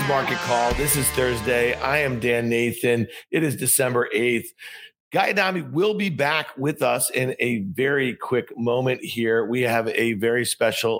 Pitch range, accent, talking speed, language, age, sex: 105-130 Hz, American, 170 wpm, English, 40-59, male